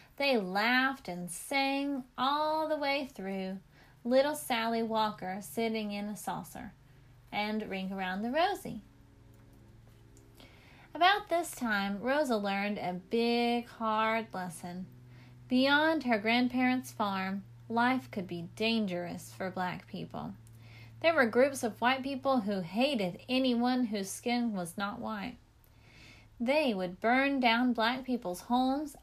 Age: 30-49